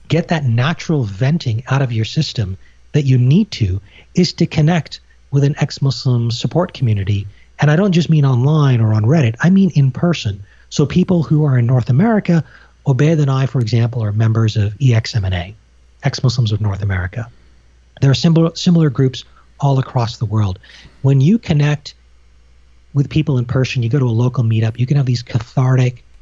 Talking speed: 185 wpm